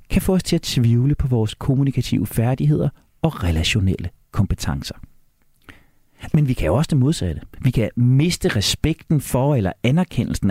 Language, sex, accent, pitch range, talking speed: Danish, male, native, 105-170 Hz, 155 wpm